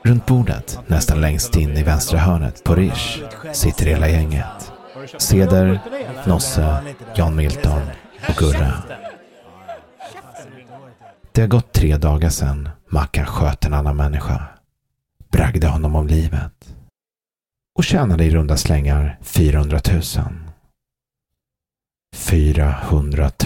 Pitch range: 75-95 Hz